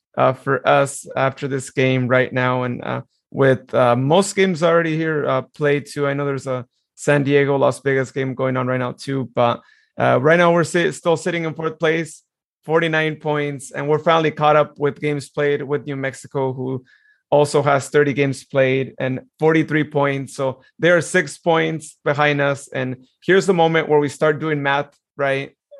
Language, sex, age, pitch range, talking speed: English, male, 30-49, 135-160 Hz, 190 wpm